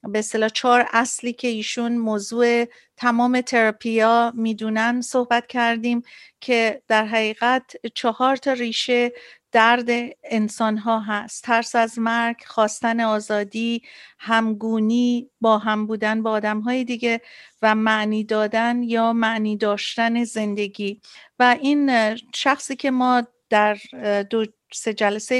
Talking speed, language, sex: 120 wpm, Persian, female